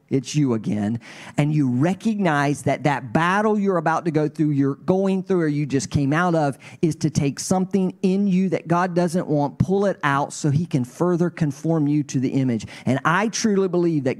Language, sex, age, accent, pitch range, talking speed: English, male, 40-59, American, 155-200 Hz, 210 wpm